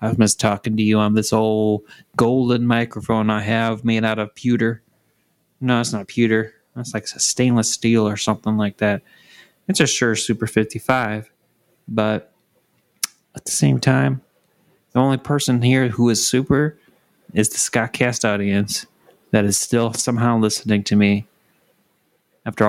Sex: male